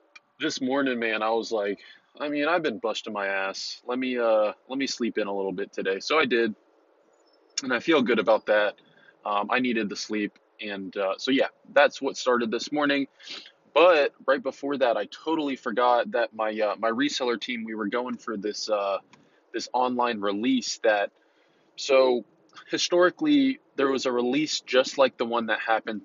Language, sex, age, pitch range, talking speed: English, male, 20-39, 110-130 Hz, 190 wpm